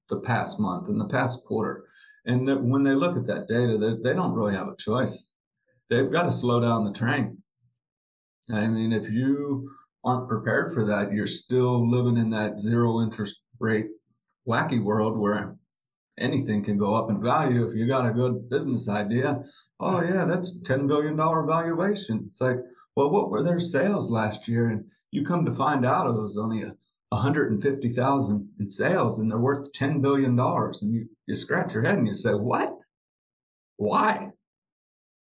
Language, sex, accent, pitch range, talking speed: English, male, American, 110-135 Hz, 175 wpm